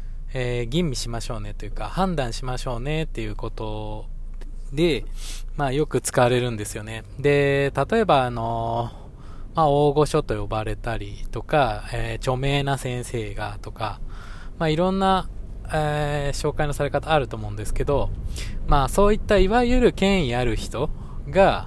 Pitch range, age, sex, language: 110-150 Hz, 20-39, male, Japanese